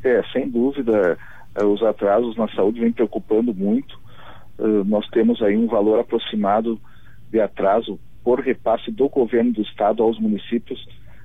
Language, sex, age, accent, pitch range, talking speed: Portuguese, male, 40-59, Brazilian, 110-130 Hz, 140 wpm